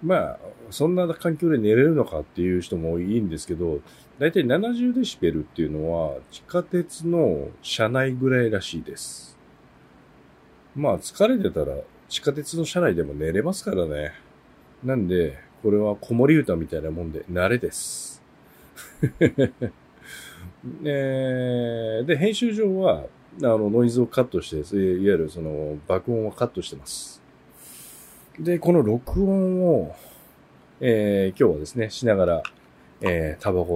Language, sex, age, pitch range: Japanese, male, 40-59, 90-150 Hz